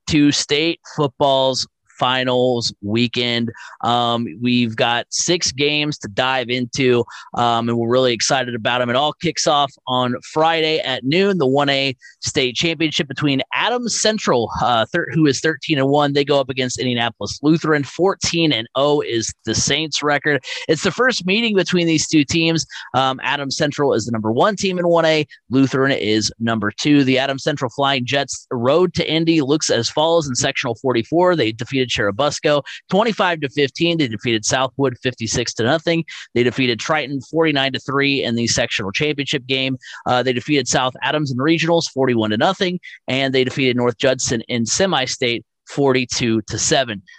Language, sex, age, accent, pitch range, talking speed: English, male, 30-49, American, 125-165 Hz, 170 wpm